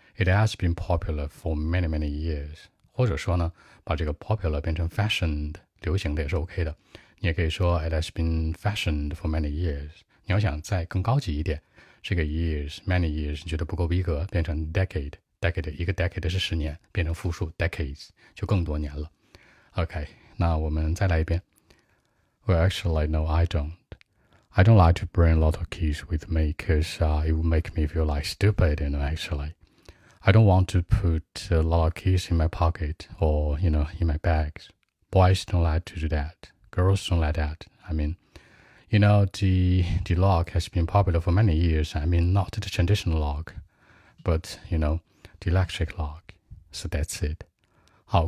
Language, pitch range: Chinese, 80-95 Hz